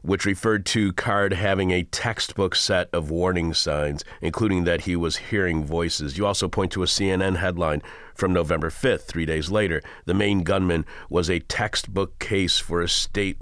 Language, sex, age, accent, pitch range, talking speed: English, male, 40-59, American, 90-105 Hz, 180 wpm